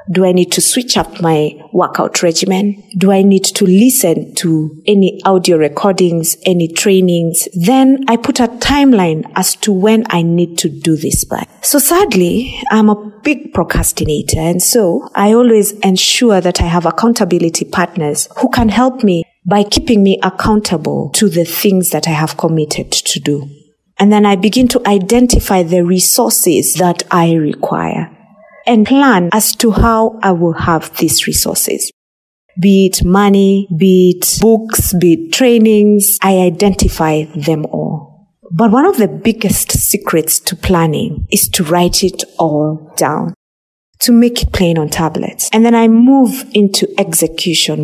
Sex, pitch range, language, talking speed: female, 165-220 Hz, English, 160 wpm